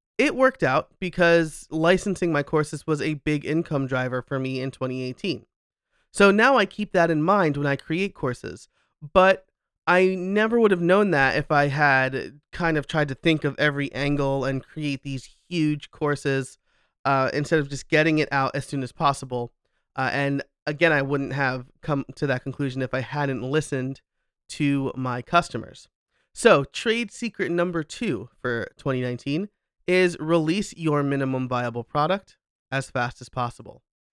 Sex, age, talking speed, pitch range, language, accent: male, 30-49, 165 wpm, 135-175 Hz, English, American